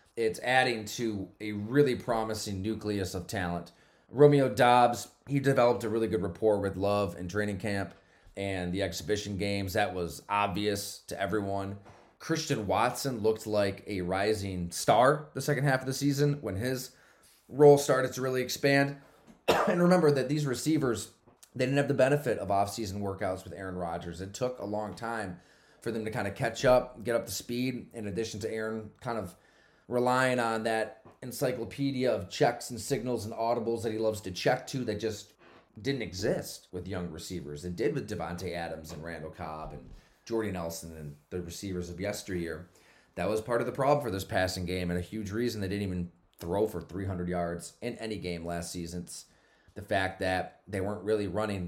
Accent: American